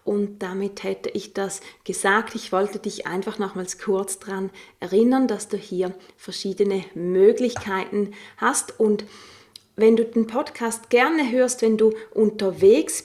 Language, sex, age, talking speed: German, female, 30-49, 140 wpm